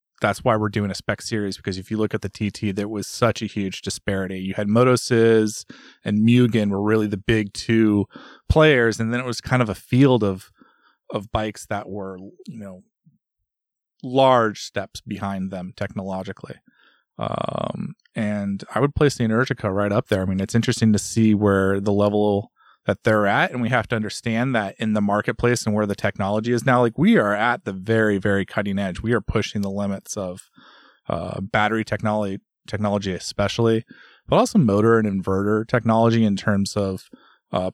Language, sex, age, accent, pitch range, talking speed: English, male, 30-49, American, 100-115 Hz, 190 wpm